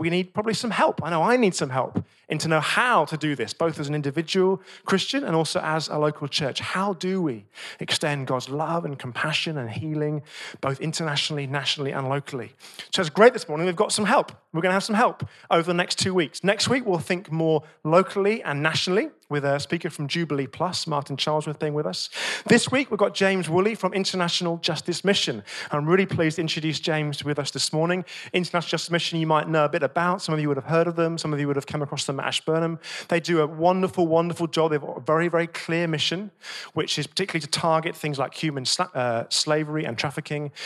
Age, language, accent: 30-49, English, British